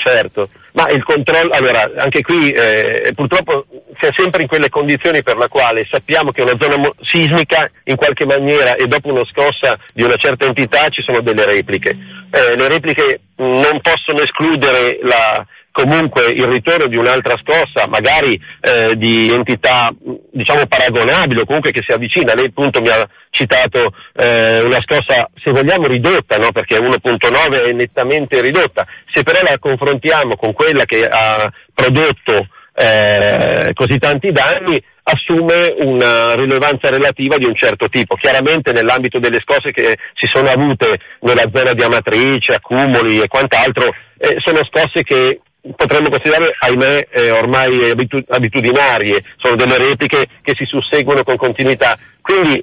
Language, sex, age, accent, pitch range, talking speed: Italian, male, 40-59, native, 125-160 Hz, 155 wpm